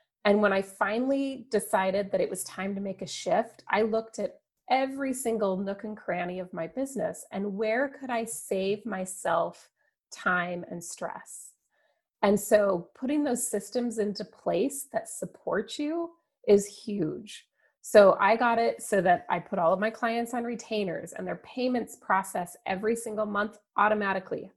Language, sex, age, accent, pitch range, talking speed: English, female, 30-49, American, 190-245 Hz, 165 wpm